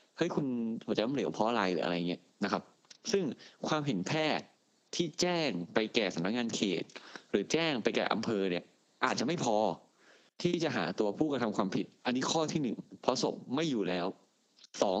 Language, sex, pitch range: Thai, male, 100-140 Hz